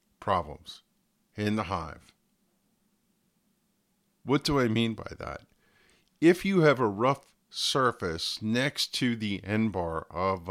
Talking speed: 125 wpm